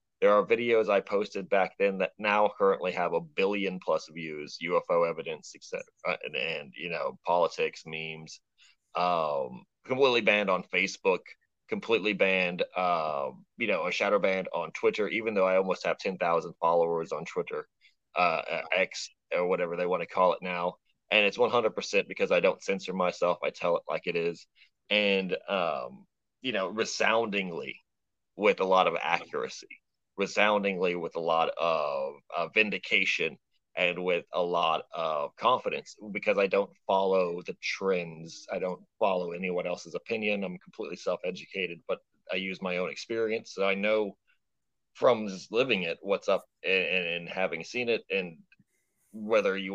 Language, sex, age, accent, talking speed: English, male, 30-49, American, 155 wpm